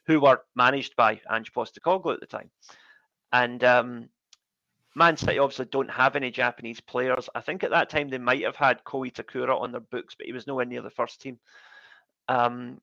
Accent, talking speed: British, 195 wpm